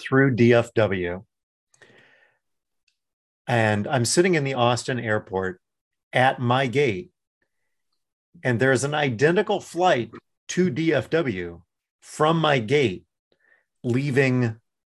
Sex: male